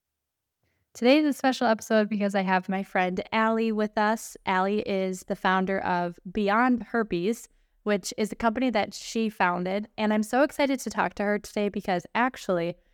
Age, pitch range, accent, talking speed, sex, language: 10-29, 185-225 Hz, American, 175 wpm, female, English